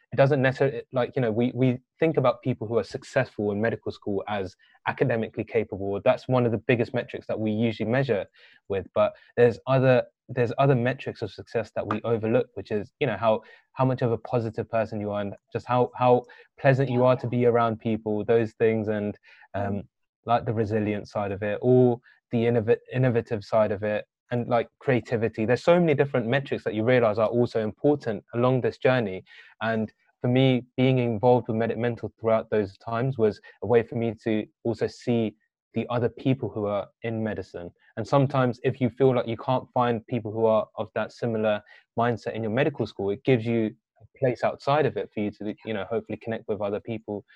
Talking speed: 210 wpm